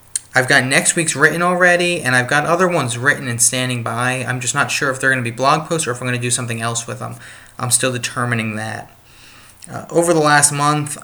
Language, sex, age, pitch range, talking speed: English, male, 20-39, 120-135 Hz, 245 wpm